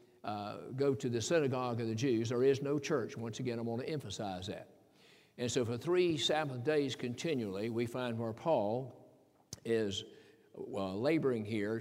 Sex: male